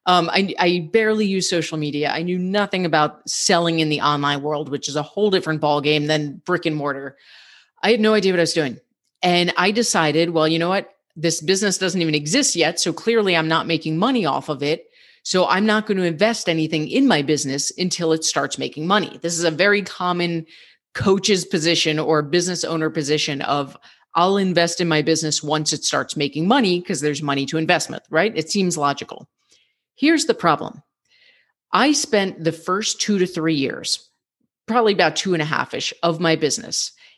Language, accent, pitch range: English, American, 155-195 Hz